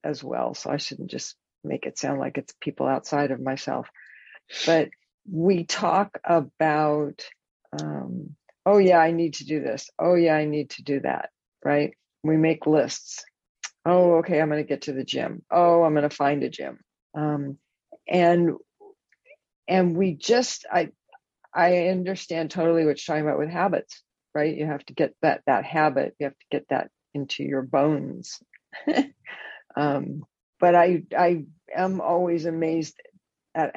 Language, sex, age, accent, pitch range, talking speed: English, female, 50-69, American, 150-175 Hz, 165 wpm